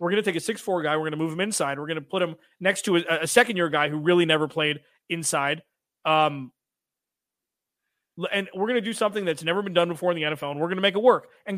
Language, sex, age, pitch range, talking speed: English, male, 30-49, 165-225 Hz, 270 wpm